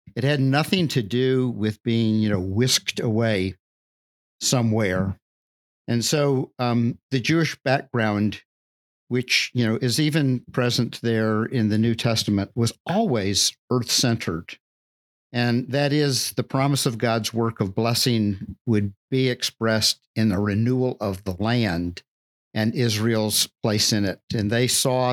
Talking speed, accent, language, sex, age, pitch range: 140 wpm, American, English, male, 50-69, 105-125 Hz